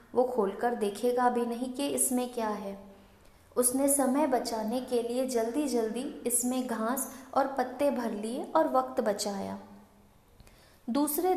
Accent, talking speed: native, 135 wpm